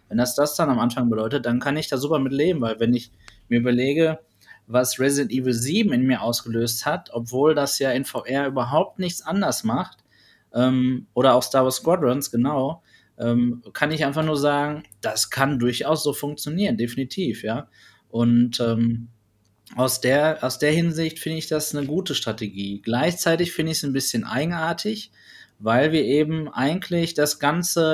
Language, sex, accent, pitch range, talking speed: German, male, German, 125-155 Hz, 175 wpm